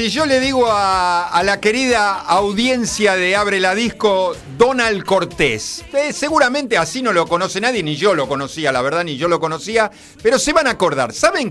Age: 50-69